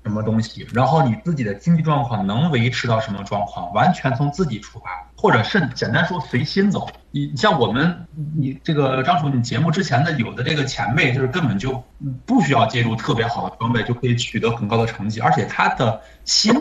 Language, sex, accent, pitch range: Chinese, male, native, 115-170 Hz